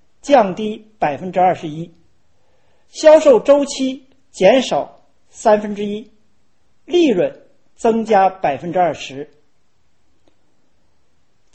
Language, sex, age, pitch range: Chinese, male, 40-59, 190-295 Hz